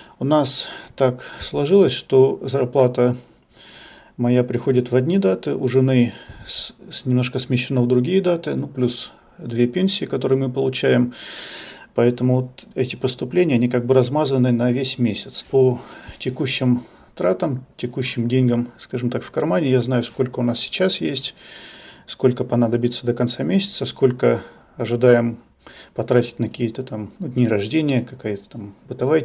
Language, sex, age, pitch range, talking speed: Russian, male, 40-59, 120-135 Hz, 140 wpm